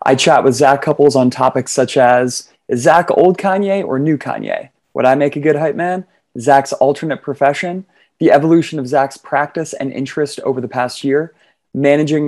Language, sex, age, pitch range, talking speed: English, male, 20-39, 130-150 Hz, 185 wpm